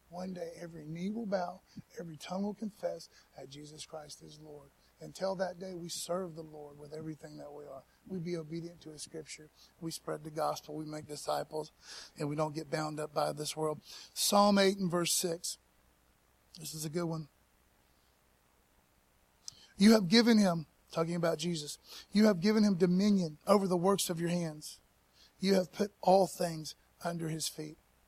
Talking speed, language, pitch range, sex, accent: 180 wpm, English, 155-195 Hz, male, American